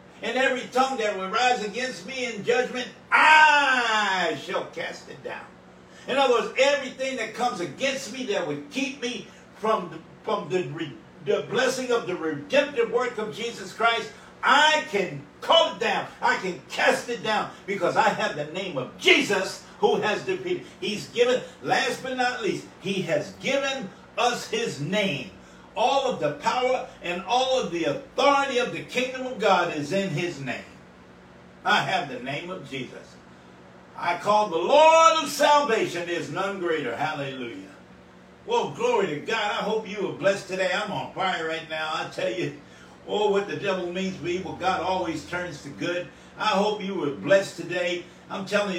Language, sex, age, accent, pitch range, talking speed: English, male, 60-79, American, 175-255 Hz, 175 wpm